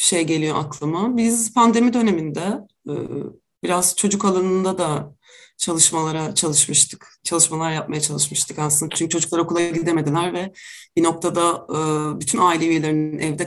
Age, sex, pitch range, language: 30-49, female, 165-235 Hz, Turkish